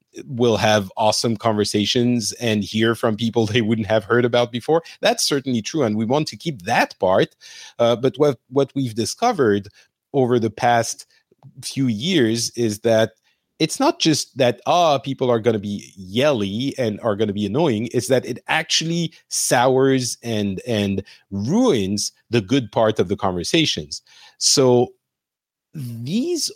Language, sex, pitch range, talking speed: English, male, 105-140 Hz, 160 wpm